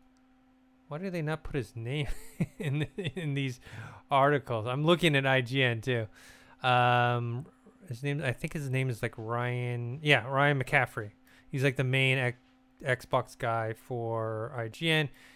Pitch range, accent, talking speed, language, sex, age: 125-150 Hz, American, 150 wpm, English, male, 20-39